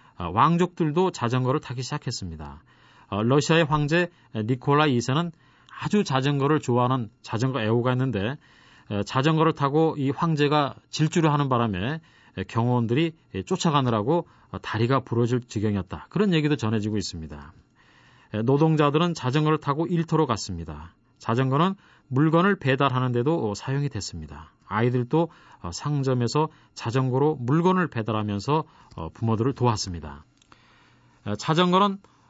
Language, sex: Korean, male